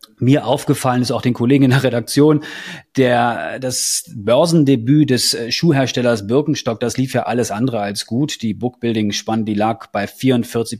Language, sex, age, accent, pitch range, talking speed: German, male, 30-49, German, 105-135 Hz, 155 wpm